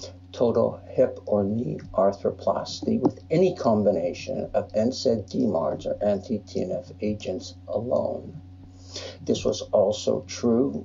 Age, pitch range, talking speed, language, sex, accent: 60-79, 90-110 Hz, 105 wpm, English, male, American